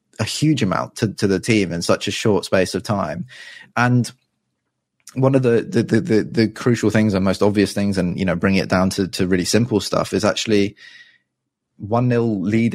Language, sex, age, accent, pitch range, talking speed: English, male, 20-39, British, 95-110 Hz, 205 wpm